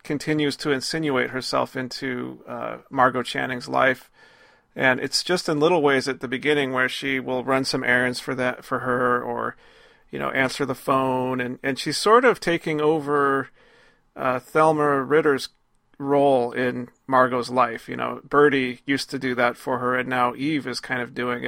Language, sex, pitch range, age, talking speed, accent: English, male, 125-150 Hz, 40-59, 180 wpm, American